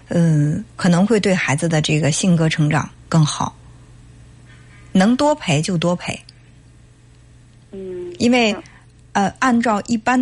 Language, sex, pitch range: Chinese, female, 150-210 Hz